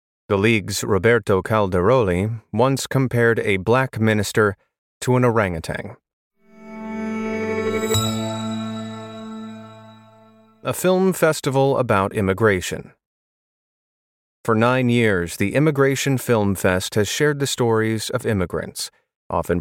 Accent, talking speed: American, 95 wpm